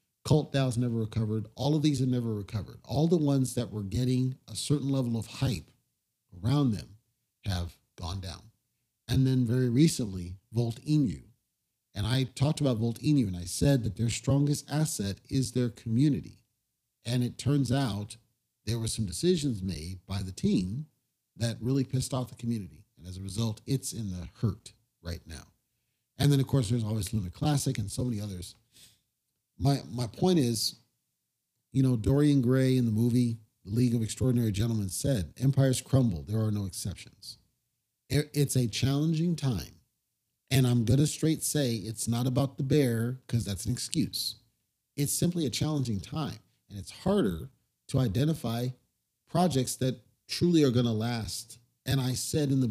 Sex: male